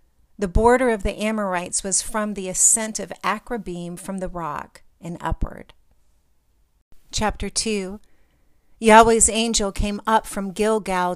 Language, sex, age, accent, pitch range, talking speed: English, female, 50-69, American, 175-215 Hz, 130 wpm